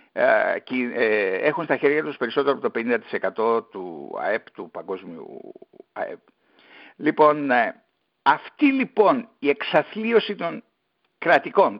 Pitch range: 165-250 Hz